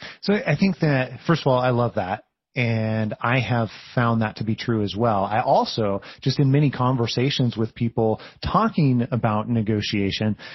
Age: 30-49